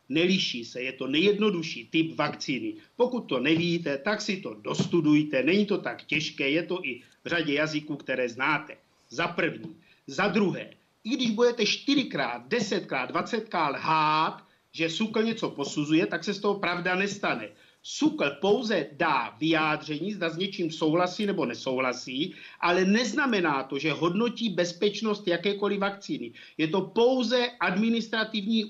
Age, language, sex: 50-69, Czech, male